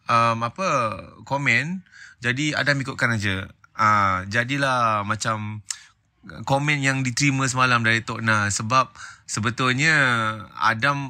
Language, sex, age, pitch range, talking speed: Malay, male, 20-39, 110-135 Hz, 110 wpm